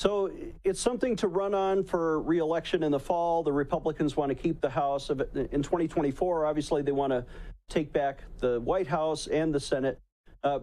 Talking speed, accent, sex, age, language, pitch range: 185 wpm, American, male, 40-59, English, 155-200 Hz